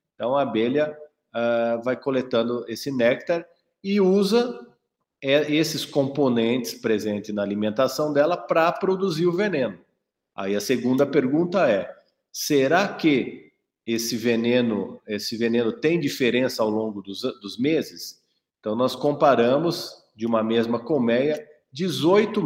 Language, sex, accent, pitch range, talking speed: Portuguese, male, Brazilian, 120-165 Hz, 120 wpm